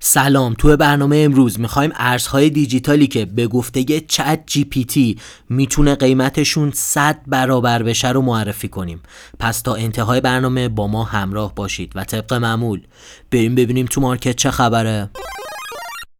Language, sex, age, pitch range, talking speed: Persian, male, 30-49, 125-170 Hz, 150 wpm